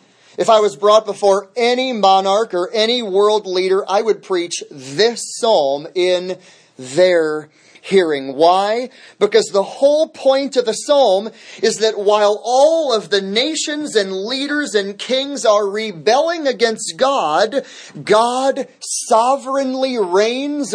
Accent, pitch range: American, 175-230 Hz